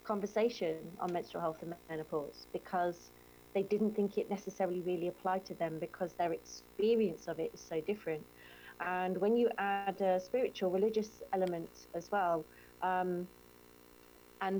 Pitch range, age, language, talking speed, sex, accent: 155-200 Hz, 40-59, English, 150 wpm, female, British